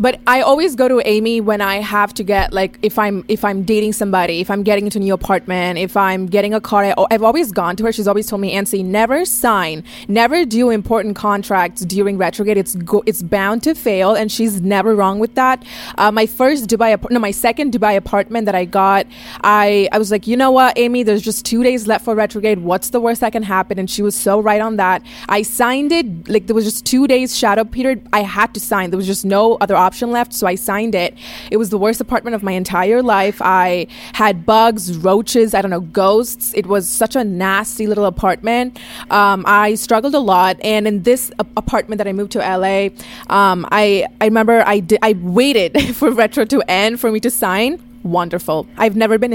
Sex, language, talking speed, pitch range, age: female, English, 225 wpm, 200-235 Hz, 20-39